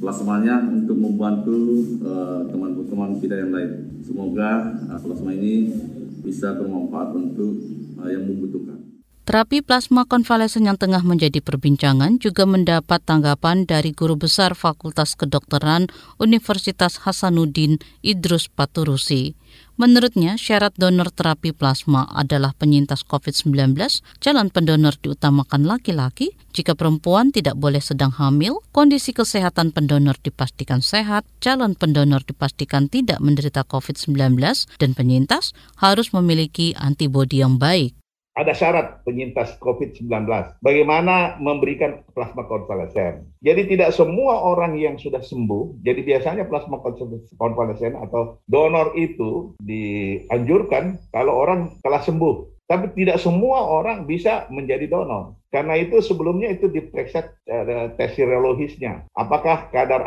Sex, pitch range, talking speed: male, 130-185 Hz, 115 wpm